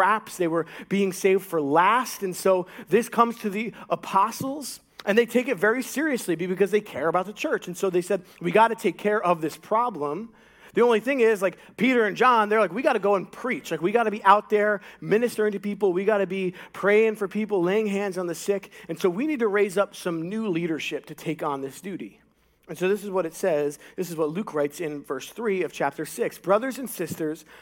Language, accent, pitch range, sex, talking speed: English, American, 180-230 Hz, male, 240 wpm